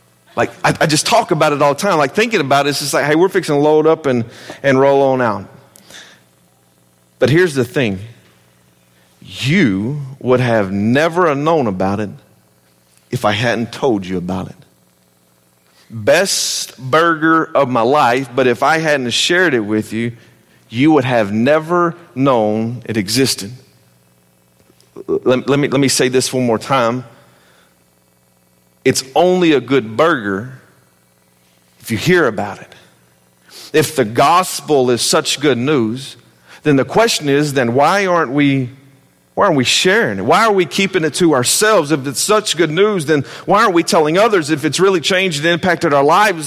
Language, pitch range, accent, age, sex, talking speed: English, 105-180 Hz, American, 40-59, male, 170 wpm